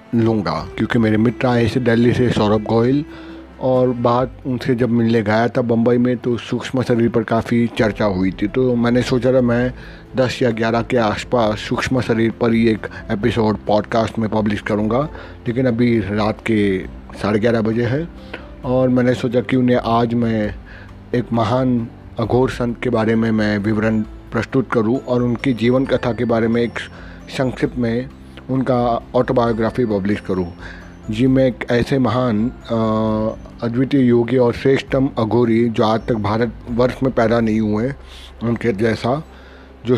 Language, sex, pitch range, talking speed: Hindi, male, 110-125 Hz, 160 wpm